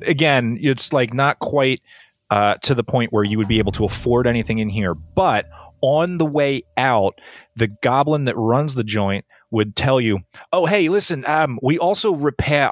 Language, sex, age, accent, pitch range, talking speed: English, male, 30-49, American, 105-135 Hz, 190 wpm